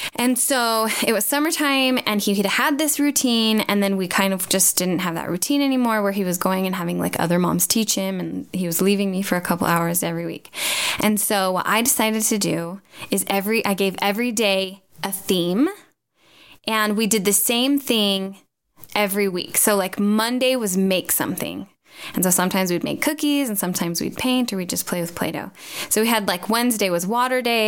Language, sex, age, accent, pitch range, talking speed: English, female, 10-29, American, 190-235 Hz, 210 wpm